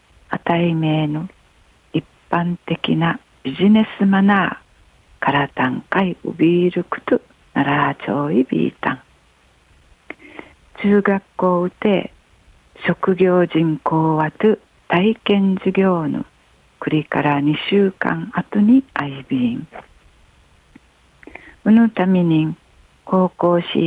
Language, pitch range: Japanese, 155-200 Hz